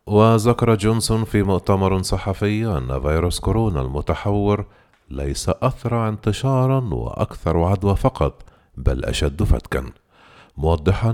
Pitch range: 75-110 Hz